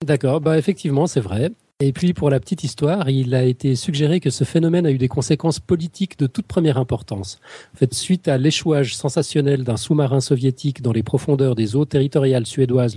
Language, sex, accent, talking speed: French, male, French, 200 wpm